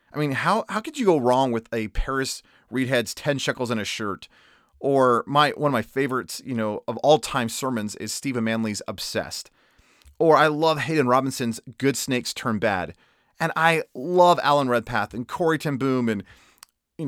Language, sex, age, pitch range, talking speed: English, male, 30-49, 120-160 Hz, 185 wpm